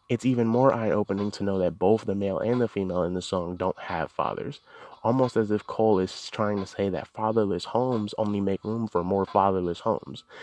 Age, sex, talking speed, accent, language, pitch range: 20-39, male, 215 wpm, American, English, 100-125 Hz